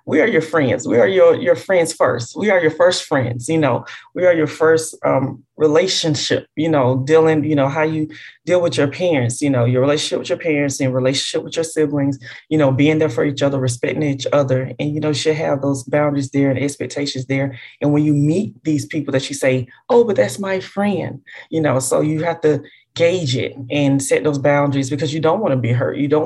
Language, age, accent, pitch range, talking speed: English, 20-39, American, 140-170 Hz, 235 wpm